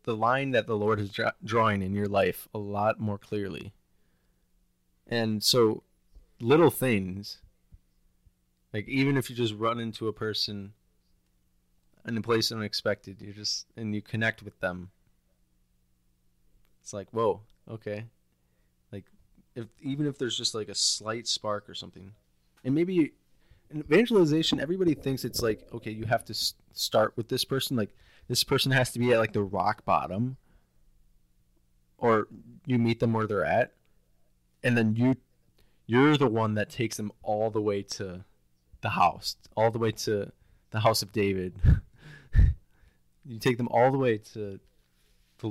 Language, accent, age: English, American, 20-39